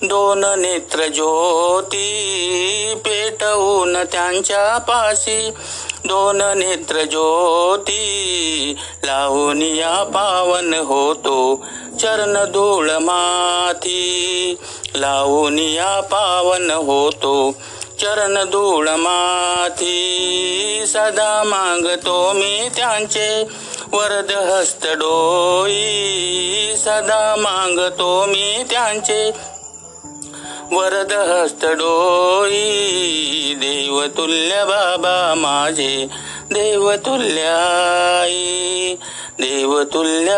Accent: native